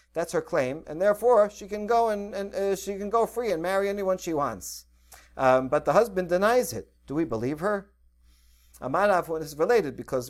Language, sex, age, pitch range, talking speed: English, male, 50-69, 130-180 Hz, 200 wpm